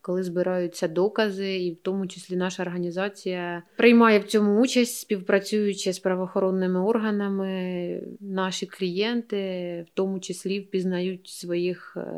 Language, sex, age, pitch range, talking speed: Ukrainian, female, 20-39, 180-210 Hz, 120 wpm